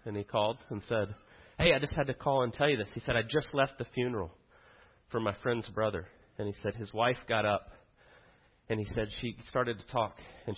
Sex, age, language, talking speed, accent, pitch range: male, 30-49, English, 235 wpm, American, 105-135 Hz